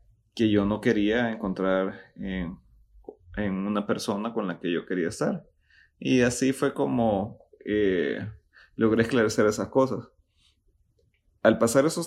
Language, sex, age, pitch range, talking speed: Spanish, male, 30-49, 100-130 Hz, 135 wpm